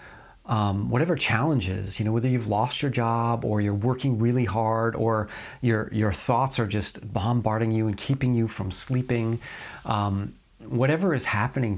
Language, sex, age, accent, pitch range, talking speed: English, male, 40-59, American, 105-130 Hz, 165 wpm